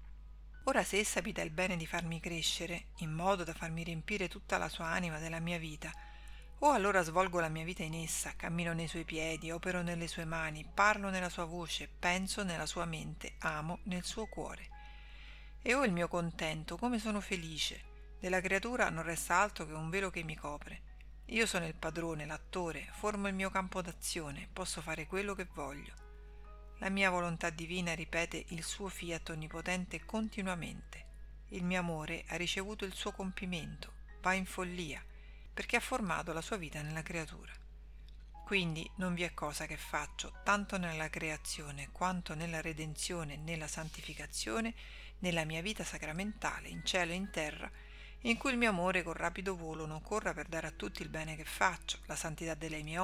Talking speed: 180 wpm